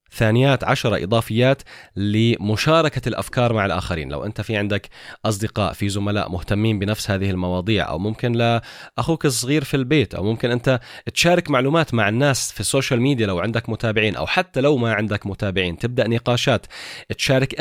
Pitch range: 100-130 Hz